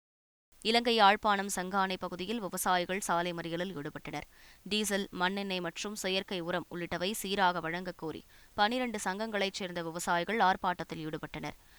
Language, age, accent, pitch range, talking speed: Tamil, 20-39, native, 170-205 Hz, 105 wpm